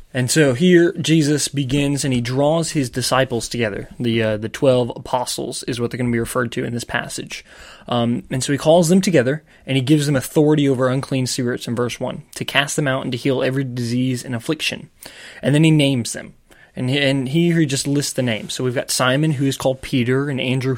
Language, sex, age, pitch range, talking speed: English, male, 20-39, 125-145 Hz, 235 wpm